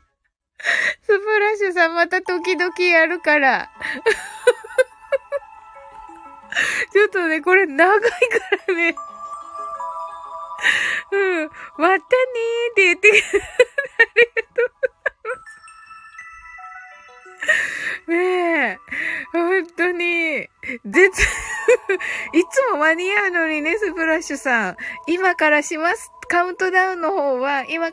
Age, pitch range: 20-39, 245-390 Hz